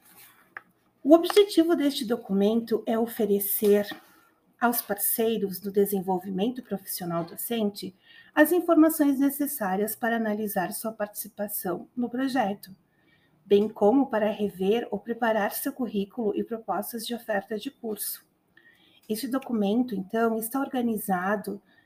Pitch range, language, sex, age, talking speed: 200-250 Hz, Portuguese, female, 40-59, 110 wpm